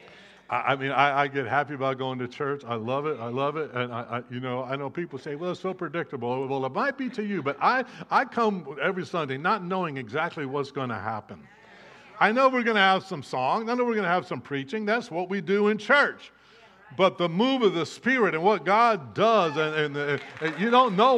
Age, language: 60-79, English